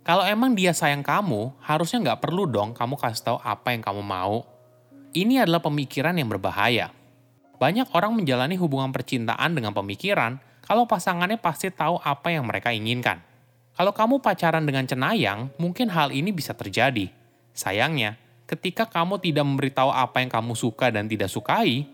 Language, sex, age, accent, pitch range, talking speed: Indonesian, male, 20-39, native, 115-165 Hz, 160 wpm